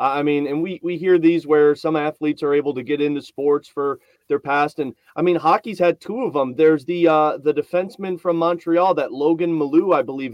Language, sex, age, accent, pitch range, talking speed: English, male, 30-49, American, 145-190 Hz, 225 wpm